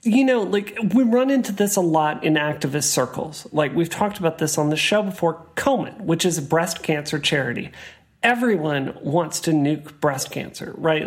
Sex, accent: male, American